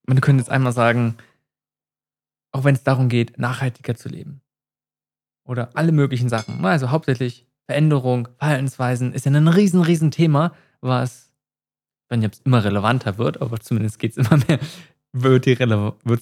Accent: German